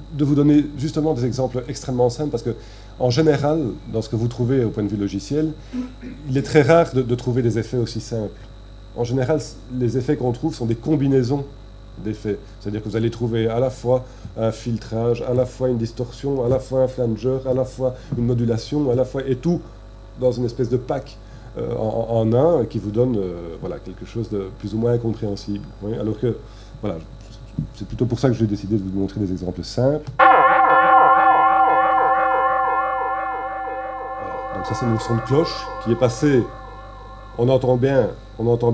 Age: 40-59